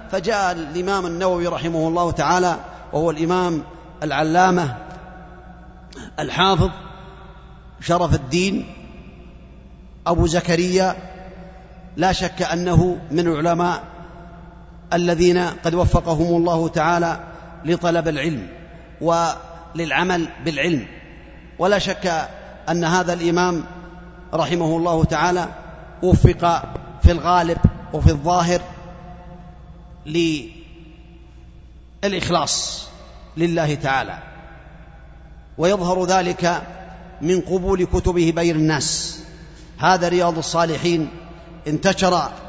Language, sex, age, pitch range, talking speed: Arabic, male, 30-49, 165-185 Hz, 80 wpm